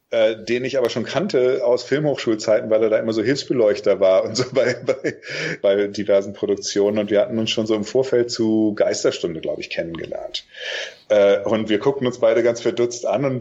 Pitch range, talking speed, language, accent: 105-130 Hz, 195 wpm, German, German